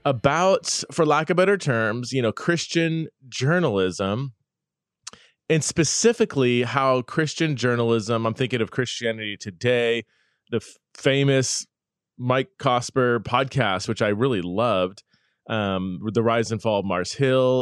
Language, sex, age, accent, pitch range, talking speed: English, male, 20-39, American, 115-155 Hz, 125 wpm